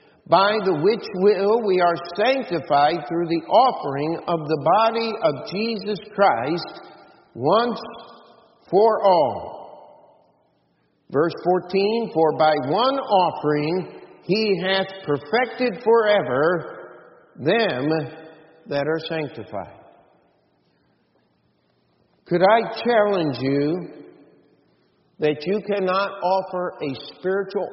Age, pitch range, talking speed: 50-69, 130-190 Hz, 95 wpm